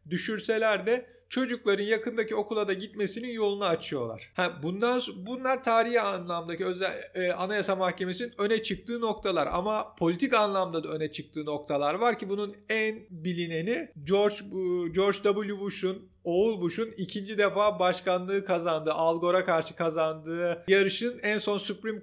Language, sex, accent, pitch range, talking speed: Turkish, male, native, 170-210 Hz, 135 wpm